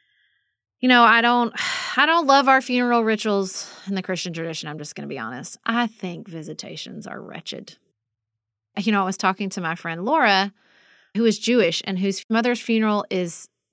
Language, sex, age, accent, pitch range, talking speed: English, female, 30-49, American, 185-260 Hz, 185 wpm